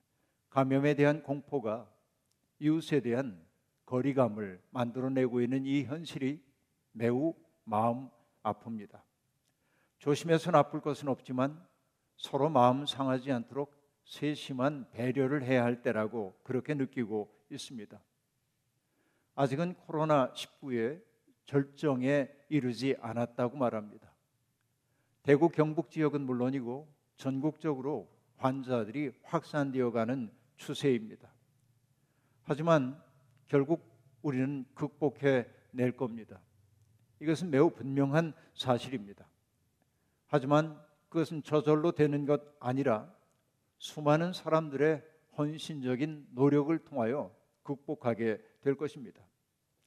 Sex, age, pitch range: male, 50-69, 125-150 Hz